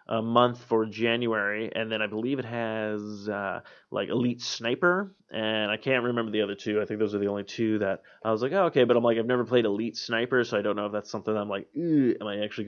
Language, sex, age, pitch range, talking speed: English, male, 30-49, 110-130 Hz, 260 wpm